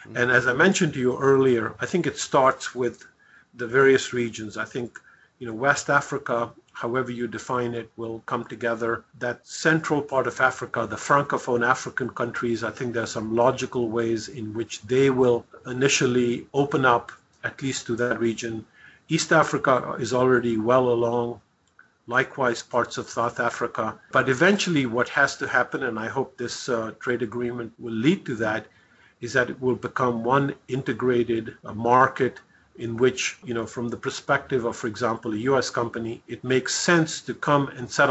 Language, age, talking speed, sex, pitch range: English, 50-69, 175 wpm, male, 115-130 Hz